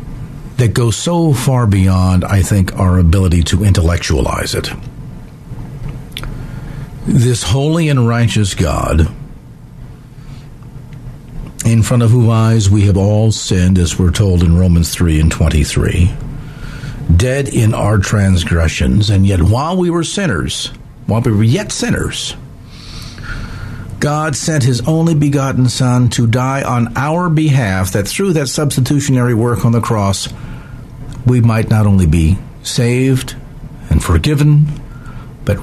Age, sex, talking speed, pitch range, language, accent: 50-69, male, 130 wpm, 100-140 Hz, English, American